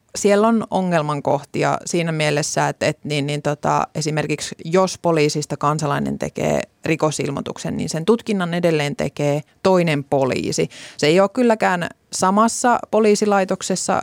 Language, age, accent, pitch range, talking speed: Finnish, 30-49, native, 150-185 Hz, 125 wpm